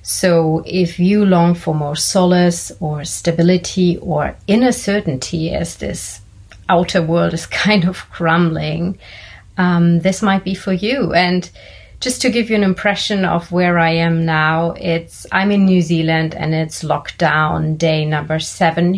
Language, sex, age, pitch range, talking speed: English, female, 30-49, 160-190 Hz, 155 wpm